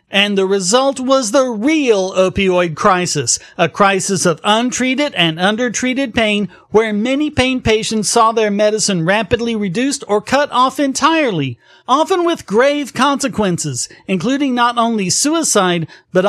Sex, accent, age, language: male, American, 40-59, English